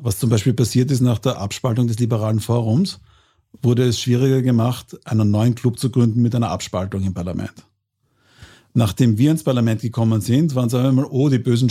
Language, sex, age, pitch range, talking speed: German, male, 50-69, 110-130 Hz, 190 wpm